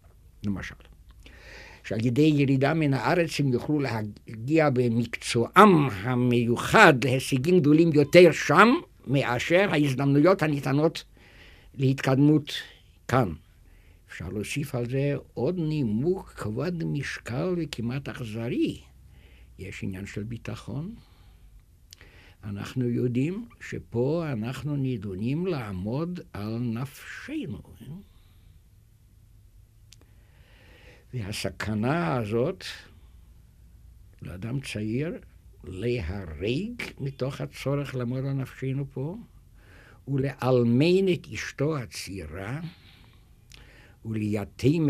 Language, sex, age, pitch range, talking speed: Hebrew, male, 60-79, 95-145 Hz, 75 wpm